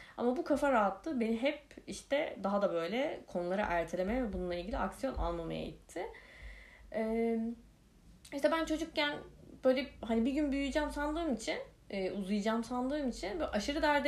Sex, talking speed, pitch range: female, 150 wpm, 180-280 Hz